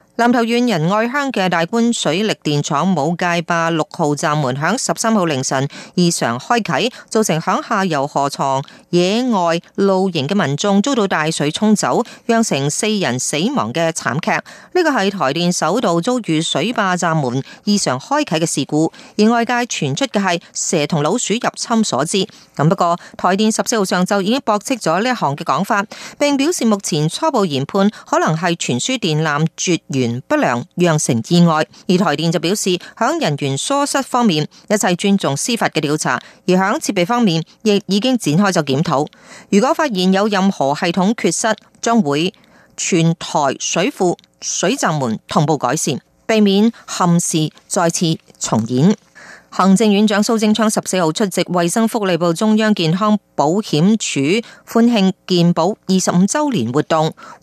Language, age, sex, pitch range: Chinese, 30-49, female, 160-225 Hz